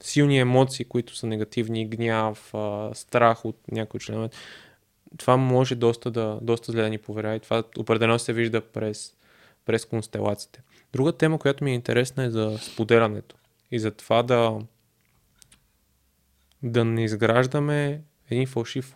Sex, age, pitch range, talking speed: male, 20-39, 115-135 Hz, 140 wpm